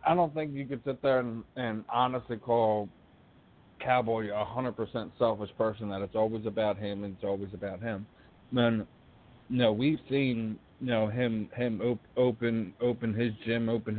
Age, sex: 40-59, male